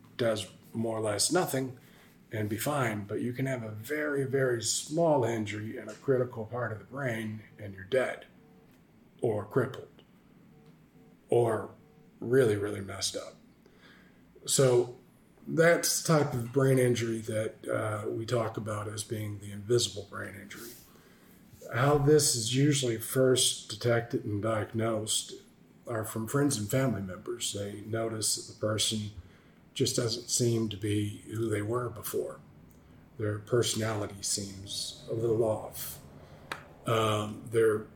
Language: English